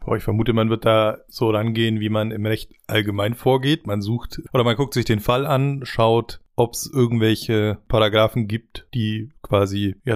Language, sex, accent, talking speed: German, male, German, 185 wpm